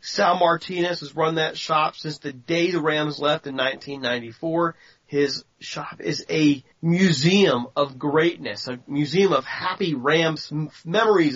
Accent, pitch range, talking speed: American, 150-195 Hz, 145 wpm